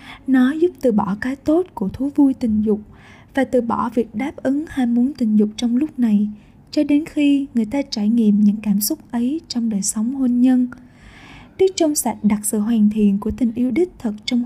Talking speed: 220 wpm